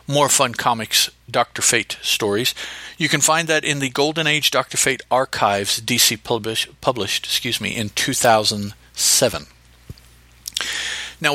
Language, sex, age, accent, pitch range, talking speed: English, male, 50-69, American, 100-140 Hz, 130 wpm